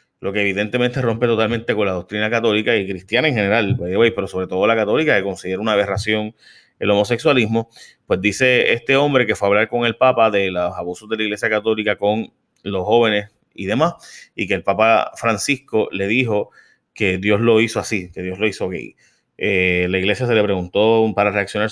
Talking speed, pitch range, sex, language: 200 wpm, 100-120 Hz, male, Spanish